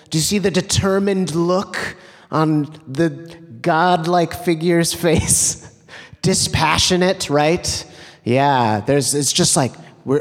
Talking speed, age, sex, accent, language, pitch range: 110 wpm, 30-49, male, American, English, 120-155 Hz